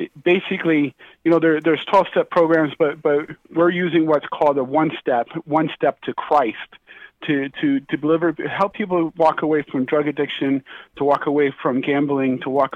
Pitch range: 140-165 Hz